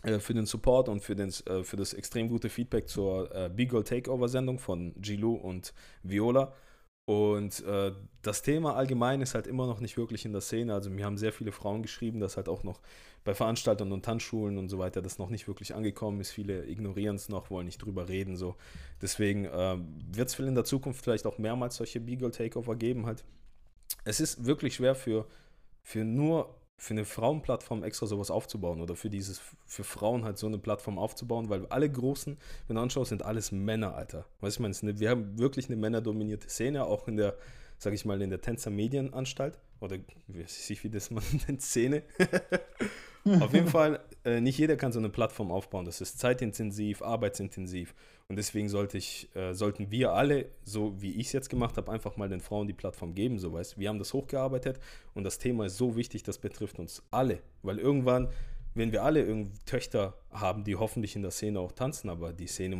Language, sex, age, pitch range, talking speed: German, male, 20-39, 100-125 Hz, 190 wpm